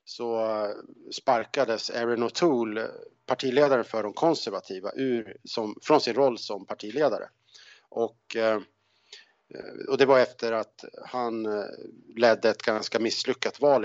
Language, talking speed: Swedish, 115 wpm